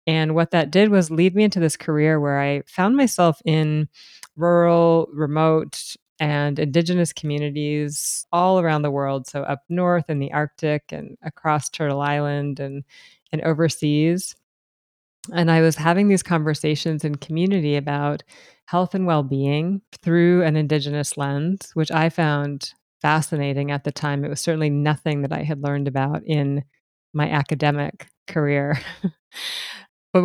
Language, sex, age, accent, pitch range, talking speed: English, female, 30-49, American, 145-170 Hz, 145 wpm